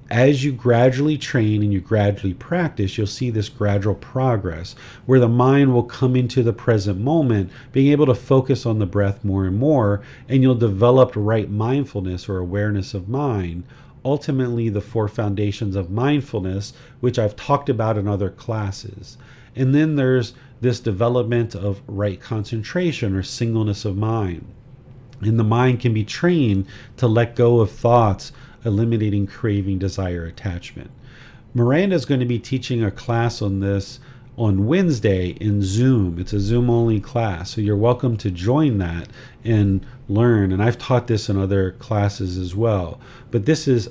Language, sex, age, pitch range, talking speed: English, male, 40-59, 100-130 Hz, 160 wpm